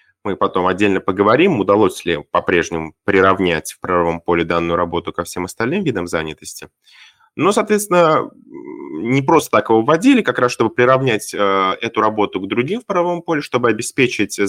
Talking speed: 155 wpm